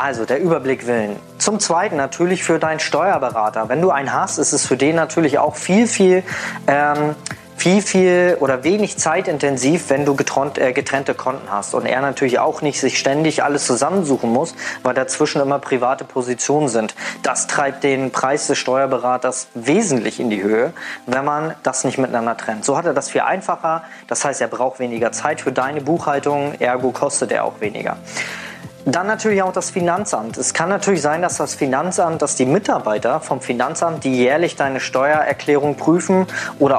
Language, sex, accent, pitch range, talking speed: German, male, German, 130-160 Hz, 175 wpm